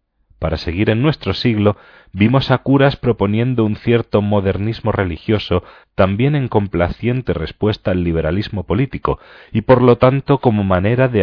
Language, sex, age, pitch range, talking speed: Spanish, male, 40-59, 90-125 Hz, 145 wpm